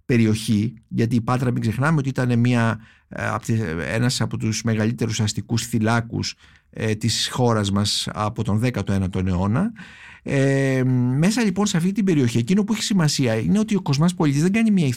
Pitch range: 120-185 Hz